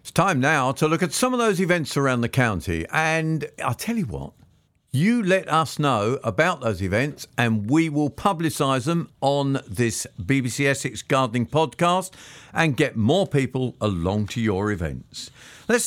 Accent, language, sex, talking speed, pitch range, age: British, English, male, 170 wpm, 120-165 Hz, 50-69